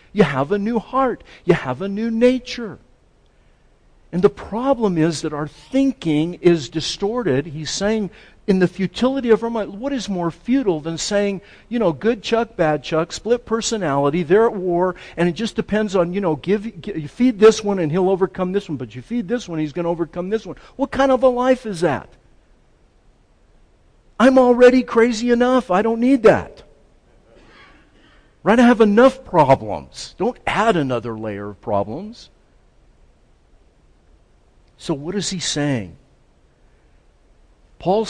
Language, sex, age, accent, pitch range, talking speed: English, male, 50-69, American, 140-225 Hz, 165 wpm